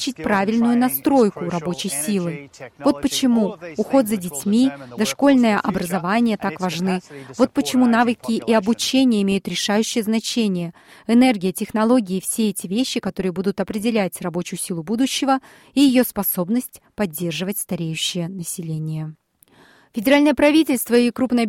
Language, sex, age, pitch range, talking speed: Russian, female, 30-49, 190-250 Hz, 115 wpm